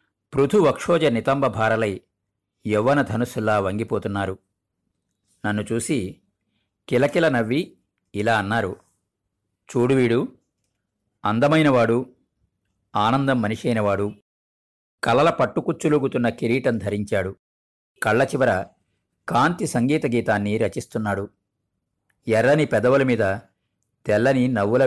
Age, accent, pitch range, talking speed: 50-69, native, 100-125 Hz, 70 wpm